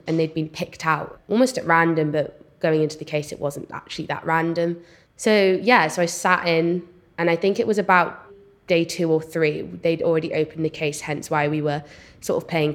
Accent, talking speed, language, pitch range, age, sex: British, 215 wpm, English, 155-175 Hz, 20-39, female